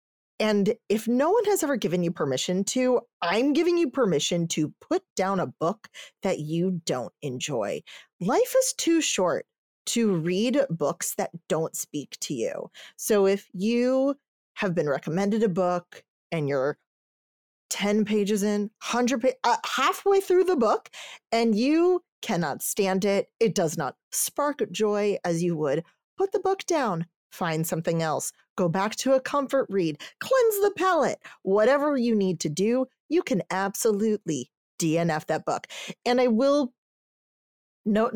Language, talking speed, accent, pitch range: English, 155 wpm, American, 175-265 Hz